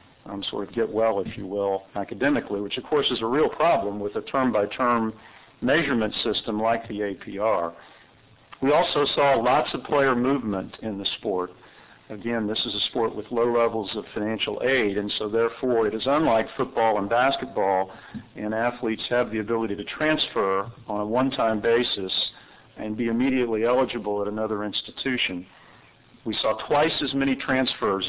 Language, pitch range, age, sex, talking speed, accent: English, 105-125 Hz, 50-69, male, 165 wpm, American